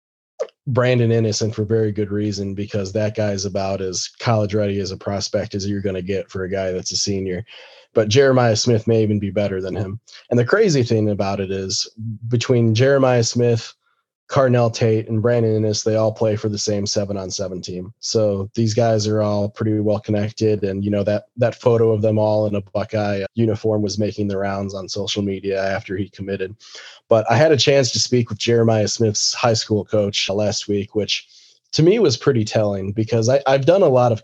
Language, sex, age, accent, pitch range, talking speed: English, male, 20-39, American, 100-115 Hz, 205 wpm